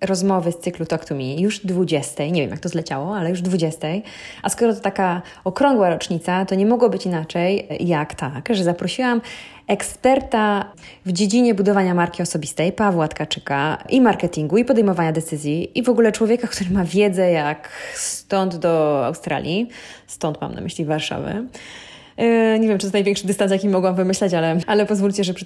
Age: 20-39